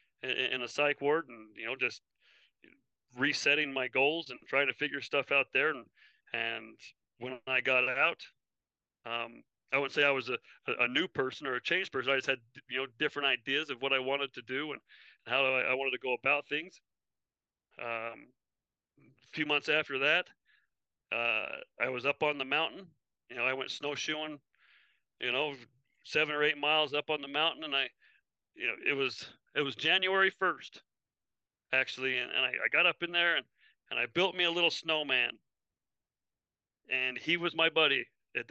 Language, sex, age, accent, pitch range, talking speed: English, male, 40-59, American, 130-155 Hz, 185 wpm